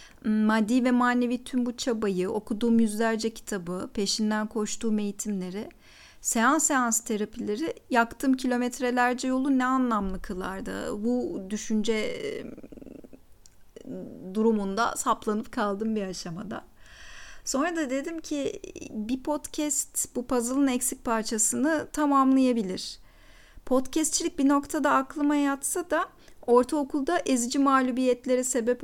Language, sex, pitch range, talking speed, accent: Turkish, female, 220-275 Hz, 100 wpm, native